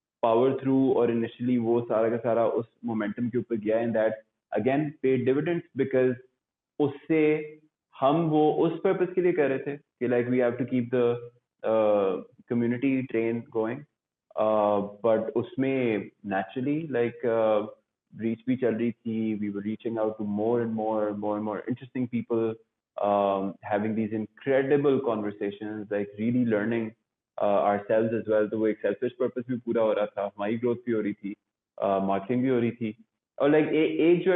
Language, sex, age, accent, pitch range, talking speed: English, male, 20-39, Indian, 110-130 Hz, 135 wpm